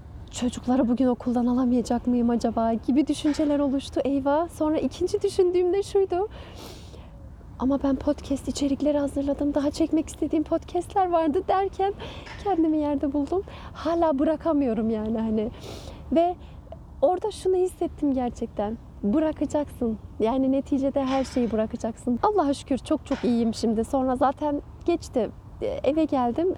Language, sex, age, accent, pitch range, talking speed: Turkish, female, 30-49, native, 240-305 Hz, 125 wpm